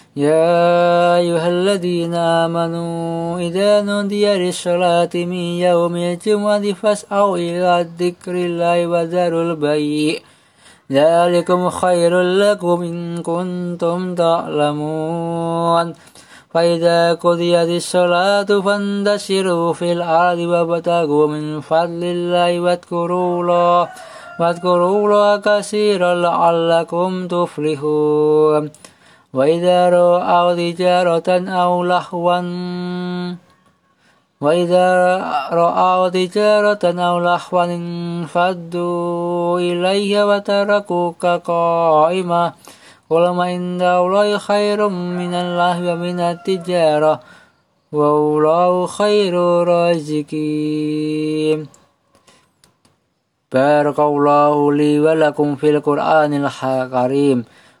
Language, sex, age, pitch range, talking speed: Arabic, male, 20-39, 165-180 Hz, 70 wpm